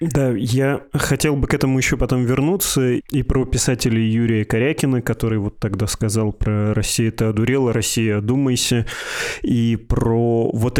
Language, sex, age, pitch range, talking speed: Russian, male, 20-39, 110-135 Hz, 160 wpm